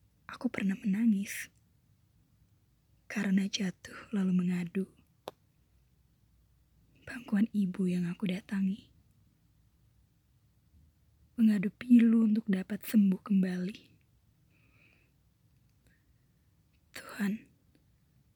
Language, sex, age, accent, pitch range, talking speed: Indonesian, female, 20-39, native, 185-220 Hz, 60 wpm